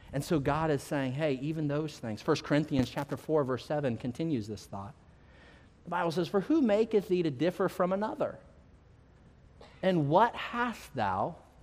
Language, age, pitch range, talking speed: English, 30-49, 150-225 Hz, 170 wpm